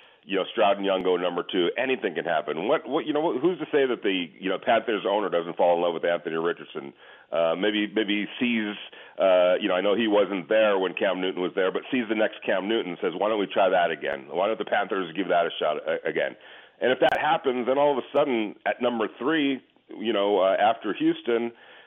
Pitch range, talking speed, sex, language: 95-145 Hz, 245 wpm, male, English